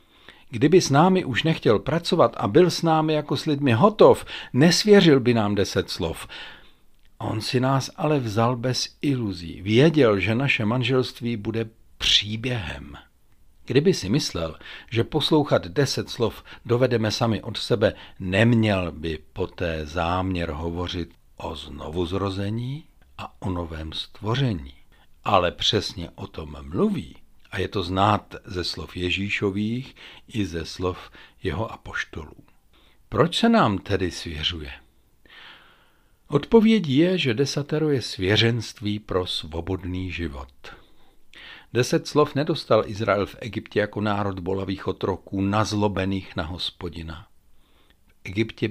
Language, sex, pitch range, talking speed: Czech, male, 90-130 Hz, 120 wpm